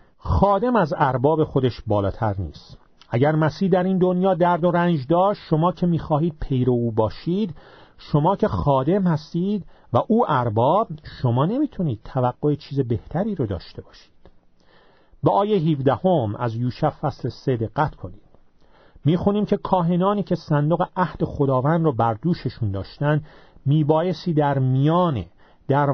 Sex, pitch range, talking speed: male, 130-180 Hz, 140 wpm